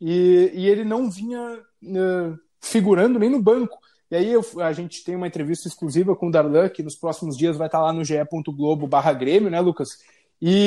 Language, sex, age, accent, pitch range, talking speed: Portuguese, male, 20-39, Brazilian, 165-215 Hz, 190 wpm